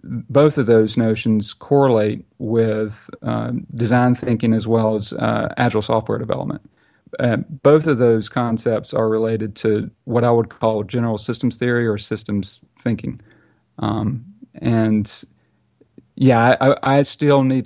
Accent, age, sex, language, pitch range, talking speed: American, 40-59, male, English, 110-125 Hz, 145 wpm